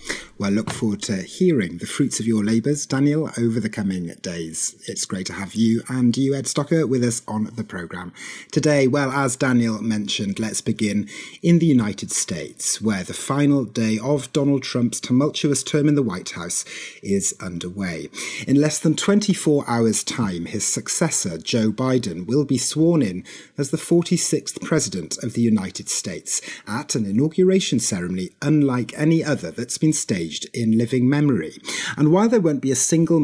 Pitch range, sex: 110-150 Hz, male